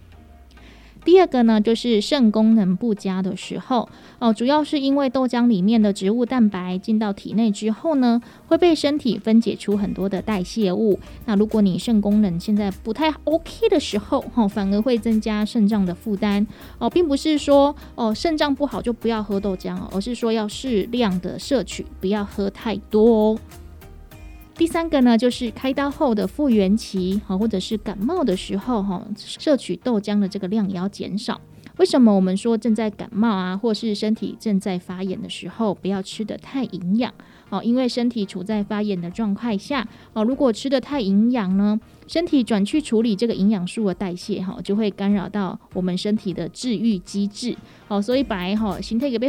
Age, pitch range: 20-39, 195-240 Hz